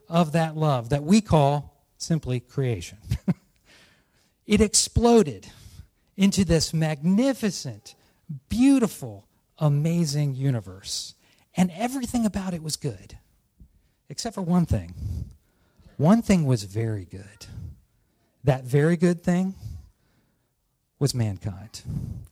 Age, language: 40-59, English